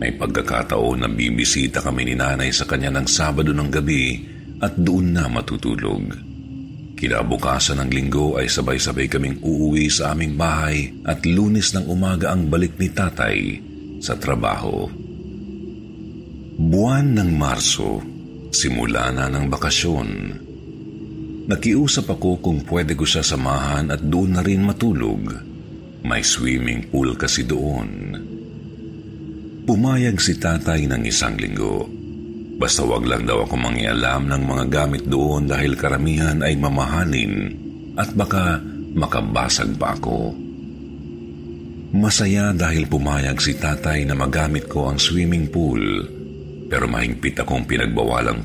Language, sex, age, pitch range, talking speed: Filipino, male, 50-69, 70-85 Hz, 125 wpm